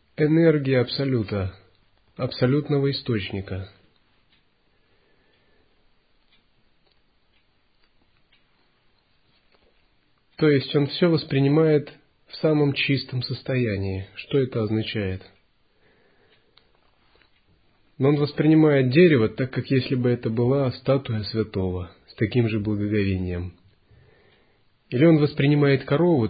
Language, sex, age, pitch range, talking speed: Russian, male, 30-49, 100-140 Hz, 80 wpm